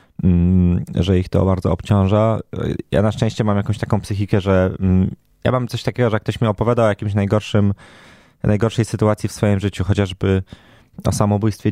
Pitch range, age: 95-110 Hz, 20-39